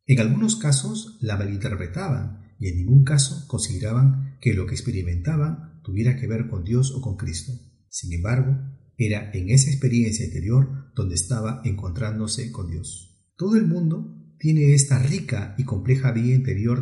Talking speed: 155 wpm